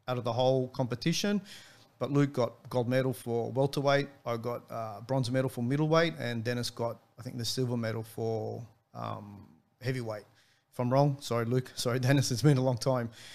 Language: English